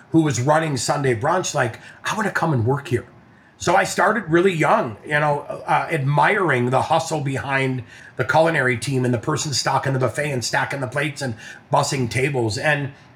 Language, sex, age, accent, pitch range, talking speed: English, male, 30-49, American, 130-180 Hz, 195 wpm